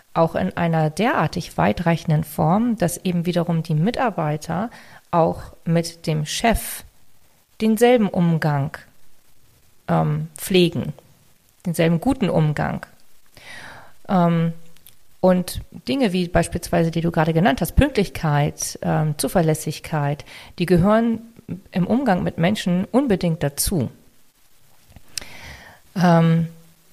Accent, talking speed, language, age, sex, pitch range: German, 100 wpm, German, 40-59, female, 160-195 Hz